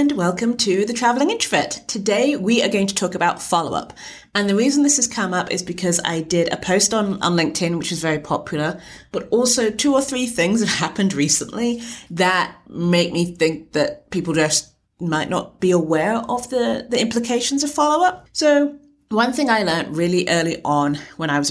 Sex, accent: female, British